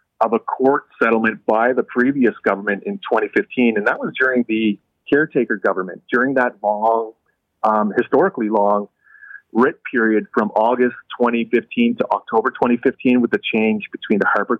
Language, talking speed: English, 150 wpm